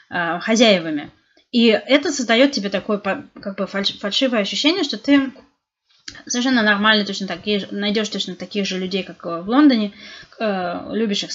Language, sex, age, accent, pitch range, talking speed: Russian, female, 20-39, native, 185-250 Hz, 130 wpm